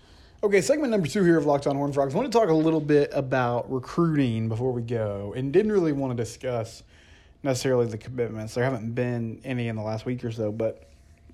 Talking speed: 220 wpm